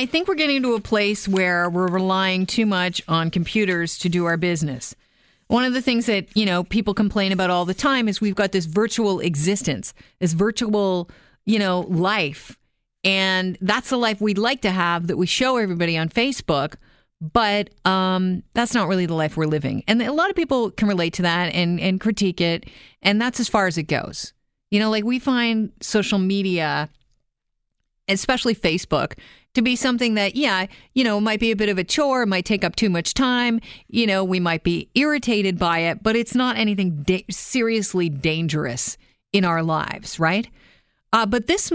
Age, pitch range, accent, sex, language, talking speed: 40-59, 175-230 Hz, American, female, English, 195 wpm